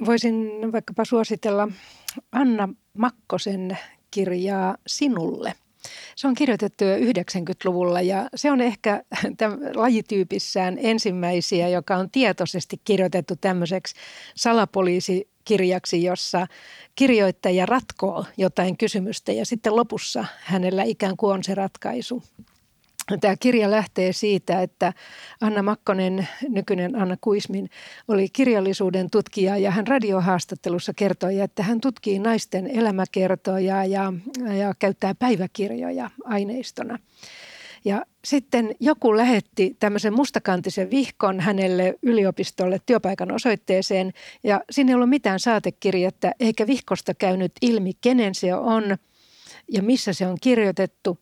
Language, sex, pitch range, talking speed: Finnish, female, 185-230 Hz, 110 wpm